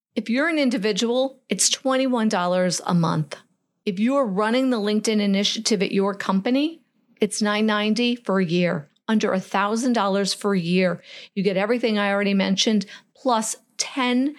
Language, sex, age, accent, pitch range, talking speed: English, female, 50-69, American, 180-225 Hz, 145 wpm